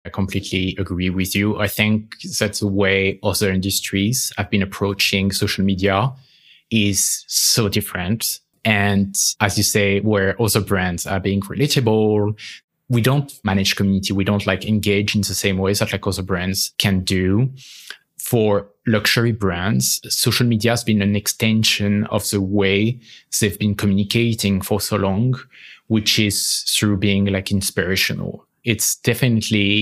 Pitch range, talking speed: 95-110 Hz, 150 wpm